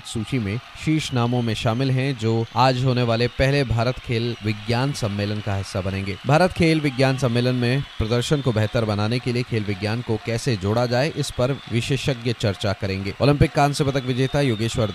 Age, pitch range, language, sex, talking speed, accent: 30-49, 105-130 Hz, Hindi, male, 185 wpm, native